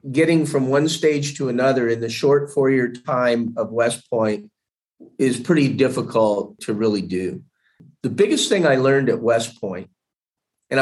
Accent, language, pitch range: American, English, 115-145 Hz